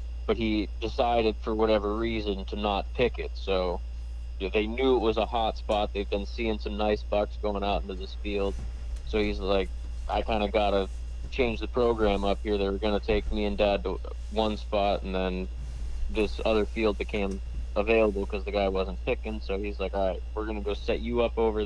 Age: 30-49